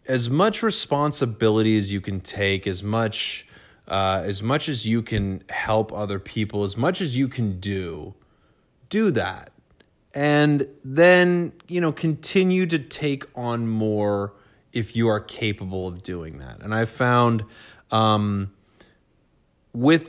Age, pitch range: 30-49, 100-135 Hz